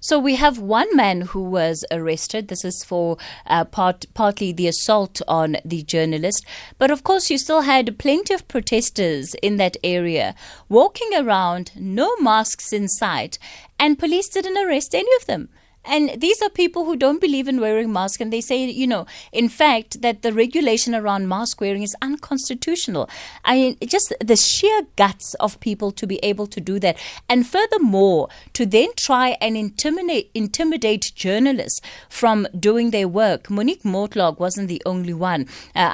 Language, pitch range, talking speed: English, 195-275 Hz, 170 wpm